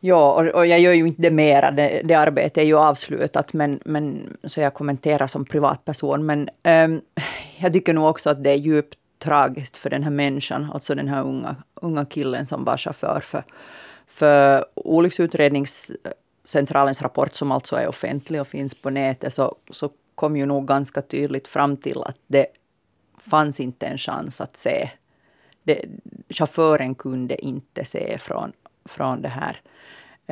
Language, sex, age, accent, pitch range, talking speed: Swedish, female, 30-49, Finnish, 135-155 Hz, 165 wpm